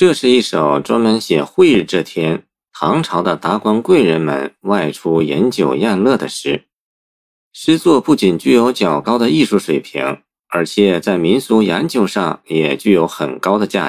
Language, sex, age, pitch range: Chinese, male, 50-69, 75-125 Hz